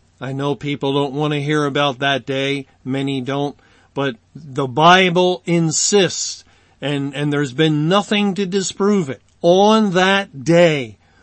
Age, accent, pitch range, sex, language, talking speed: 50-69, American, 135-180 Hz, male, English, 145 wpm